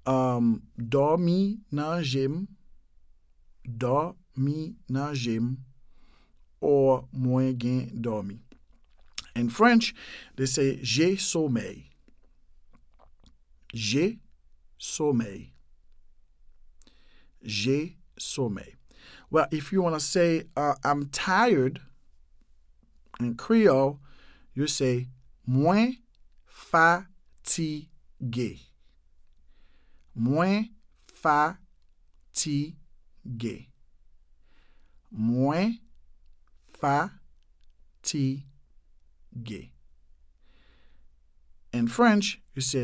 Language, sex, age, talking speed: English, male, 50-69, 65 wpm